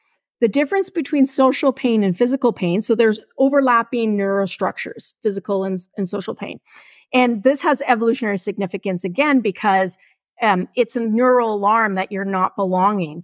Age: 40-59